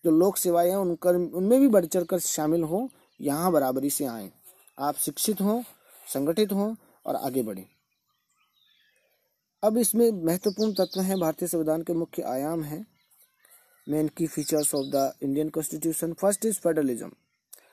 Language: Hindi